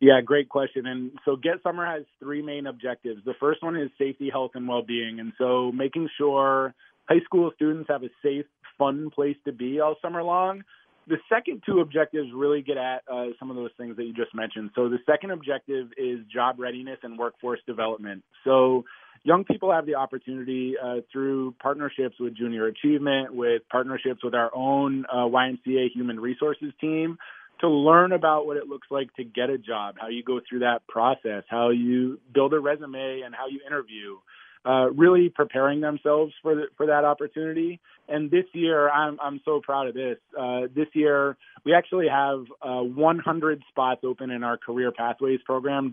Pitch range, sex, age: 125-150 Hz, male, 30-49